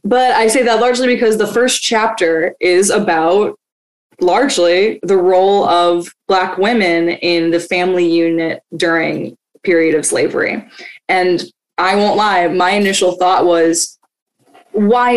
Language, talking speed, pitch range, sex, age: English, 140 wpm, 165-210 Hz, female, 20-39